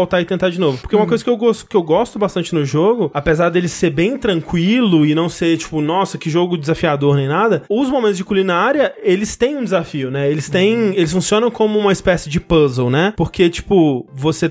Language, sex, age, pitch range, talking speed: Portuguese, male, 20-39, 160-215 Hz, 225 wpm